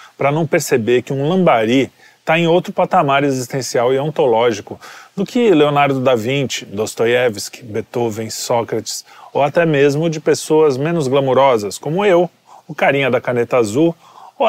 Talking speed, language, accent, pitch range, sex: 150 wpm, Portuguese, Brazilian, 120-160 Hz, male